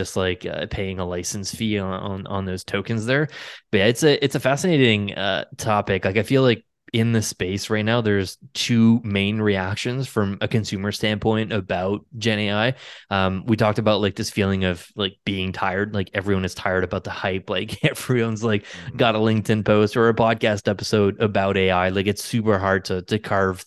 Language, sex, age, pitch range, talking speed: English, male, 20-39, 95-110 Hz, 205 wpm